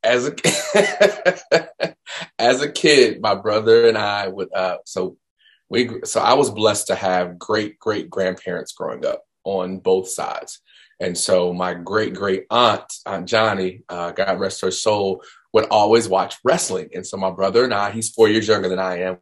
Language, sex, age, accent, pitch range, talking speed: English, male, 30-49, American, 100-140 Hz, 180 wpm